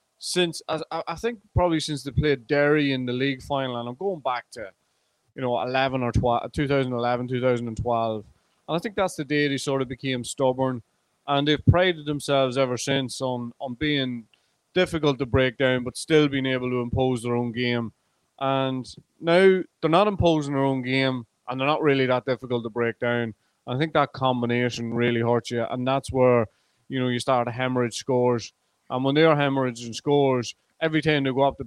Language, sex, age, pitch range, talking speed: English, male, 30-49, 120-145 Hz, 205 wpm